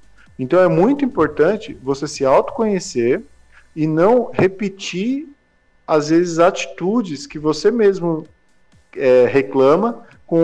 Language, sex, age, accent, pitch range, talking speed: Portuguese, male, 40-59, Brazilian, 135-175 Hz, 105 wpm